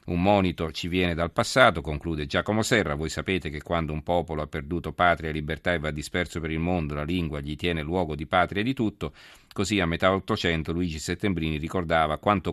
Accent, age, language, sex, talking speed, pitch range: native, 40-59, Italian, male, 210 wpm, 80-95 Hz